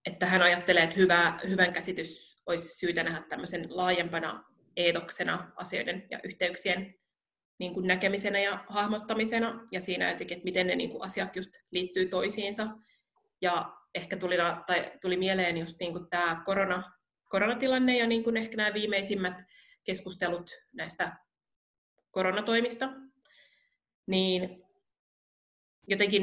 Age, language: 30-49, Finnish